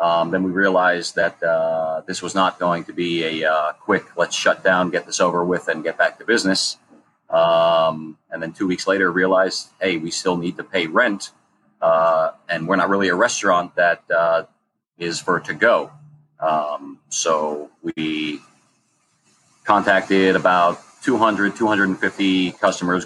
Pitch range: 85-95 Hz